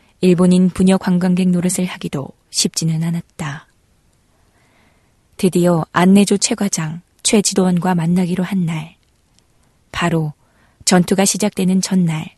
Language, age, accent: Korean, 20-39, native